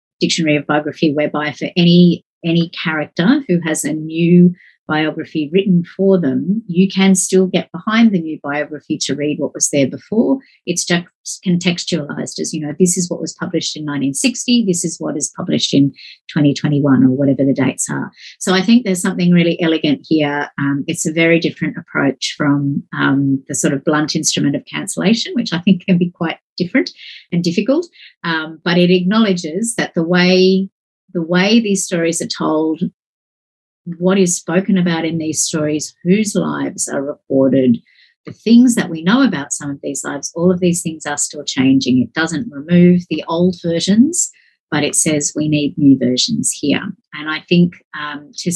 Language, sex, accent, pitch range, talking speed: English, female, Australian, 150-185 Hz, 180 wpm